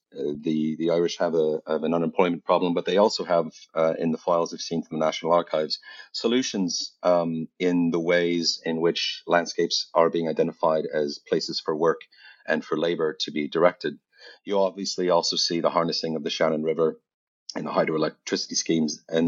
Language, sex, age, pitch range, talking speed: English, male, 30-49, 80-90 Hz, 185 wpm